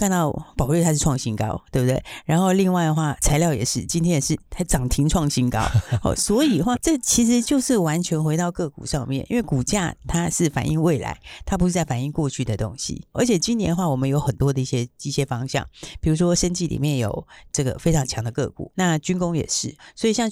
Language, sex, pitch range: Chinese, female, 135-180 Hz